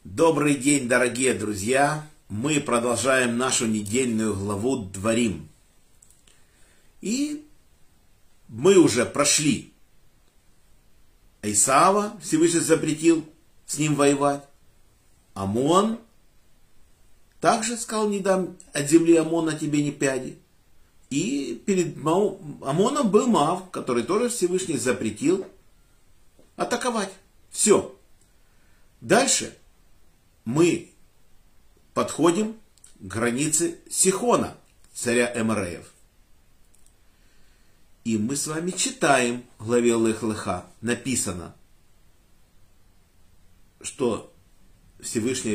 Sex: male